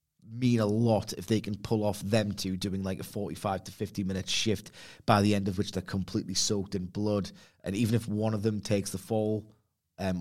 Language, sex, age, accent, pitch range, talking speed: English, male, 30-49, British, 95-115 Hz, 225 wpm